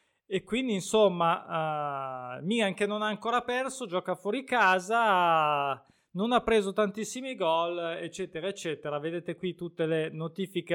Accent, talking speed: native, 145 wpm